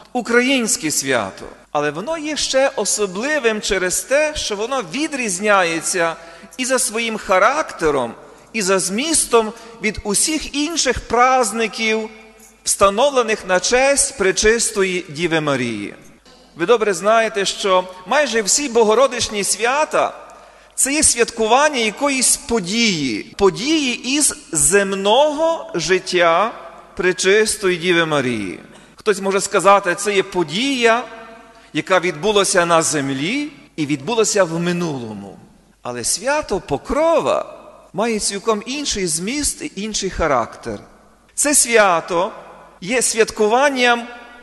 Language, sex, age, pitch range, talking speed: Ukrainian, male, 40-59, 185-250 Hz, 105 wpm